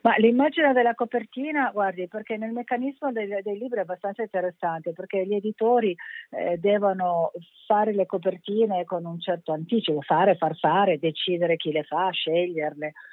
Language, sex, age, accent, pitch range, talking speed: Italian, female, 50-69, native, 165-220 Hz, 155 wpm